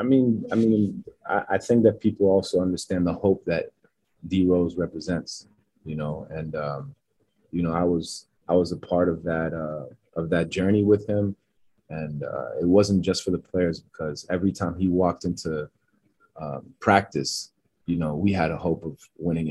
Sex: male